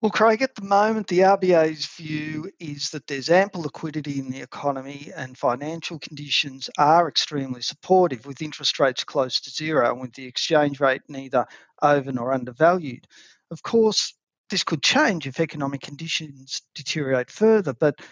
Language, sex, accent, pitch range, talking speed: English, male, Australian, 140-175 Hz, 160 wpm